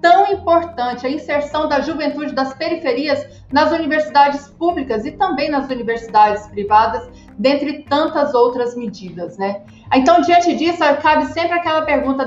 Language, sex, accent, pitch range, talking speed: Portuguese, female, Brazilian, 235-290 Hz, 135 wpm